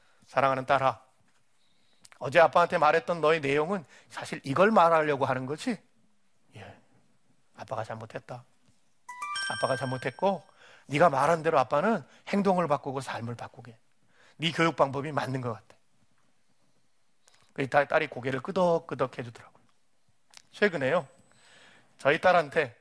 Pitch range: 140-200 Hz